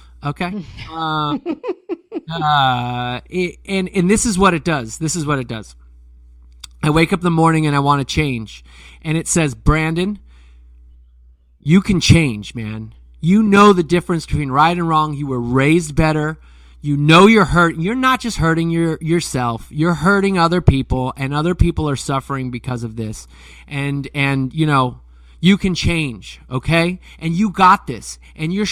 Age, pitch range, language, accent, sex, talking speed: 30-49, 125-175 Hz, English, American, male, 175 wpm